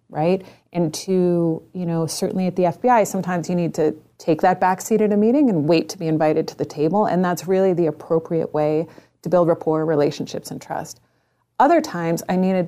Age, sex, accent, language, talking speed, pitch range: 30-49, female, American, English, 210 wpm, 165-210 Hz